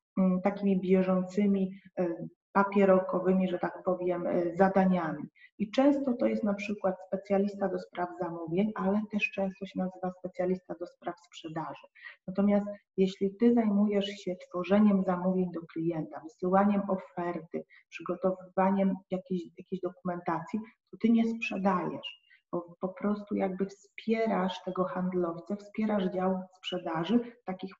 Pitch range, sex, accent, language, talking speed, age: 180-205 Hz, female, native, Polish, 125 wpm, 30-49